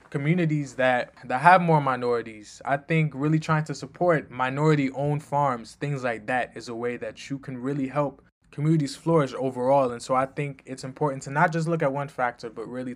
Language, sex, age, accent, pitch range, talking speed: English, male, 20-39, American, 120-150 Hz, 205 wpm